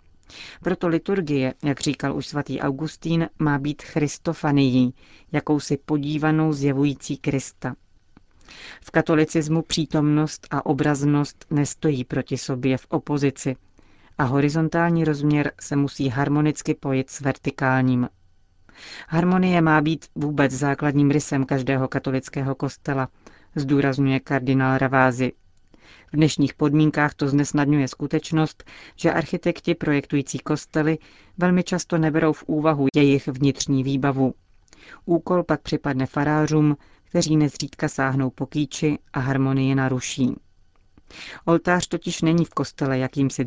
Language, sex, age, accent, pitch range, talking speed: Czech, female, 40-59, native, 135-155 Hz, 110 wpm